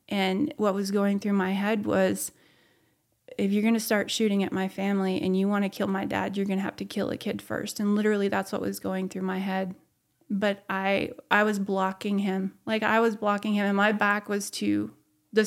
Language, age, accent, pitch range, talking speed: English, 30-49, American, 195-220 Hz, 230 wpm